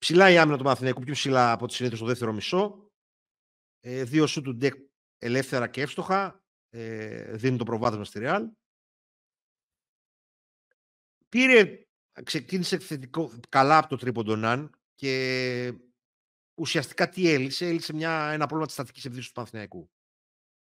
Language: Greek